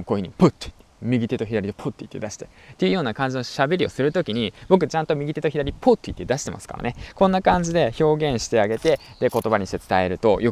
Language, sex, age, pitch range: Japanese, male, 20-39, 100-140 Hz